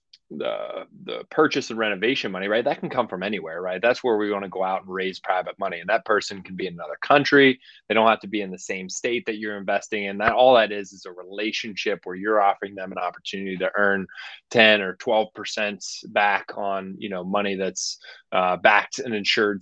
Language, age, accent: English, 20-39, American